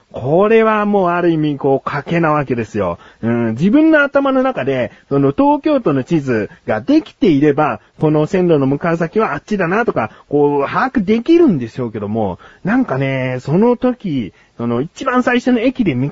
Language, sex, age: Japanese, male, 30-49